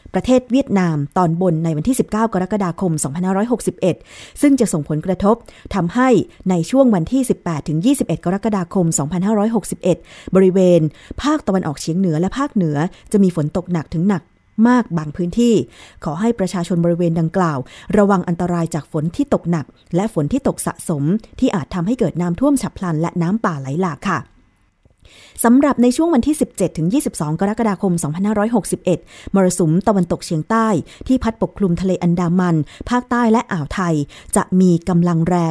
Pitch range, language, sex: 170-215 Hz, Thai, female